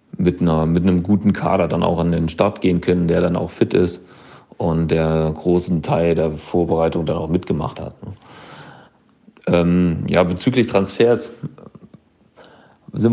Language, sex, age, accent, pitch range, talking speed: German, male, 40-59, German, 85-95 Hz, 150 wpm